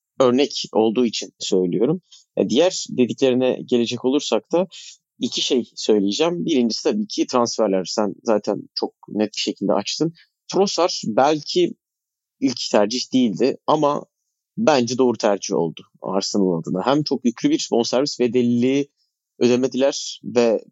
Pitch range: 110-150 Hz